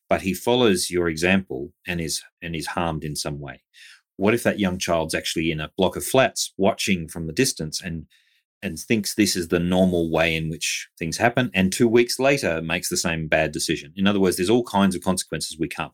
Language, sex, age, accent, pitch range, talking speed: English, male, 40-59, Australian, 85-105 Hz, 220 wpm